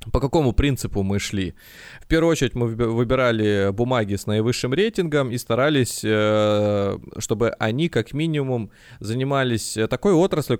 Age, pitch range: 20-39, 100-120 Hz